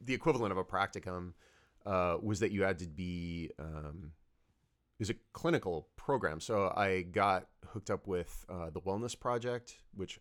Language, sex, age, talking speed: English, male, 30-49, 170 wpm